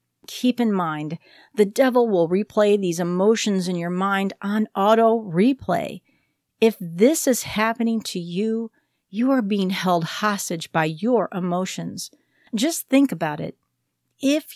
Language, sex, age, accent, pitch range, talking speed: English, female, 50-69, American, 175-235 Hz, 135 wpm